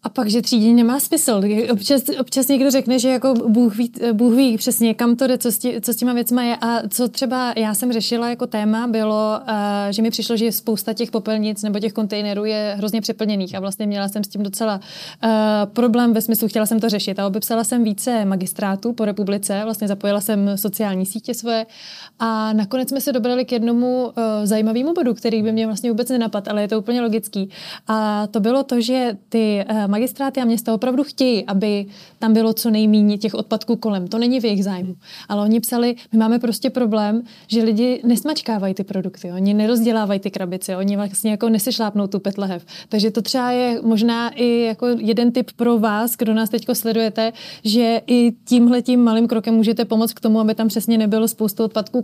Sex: female